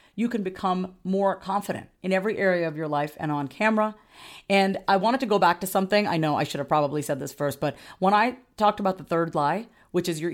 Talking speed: 245 wpm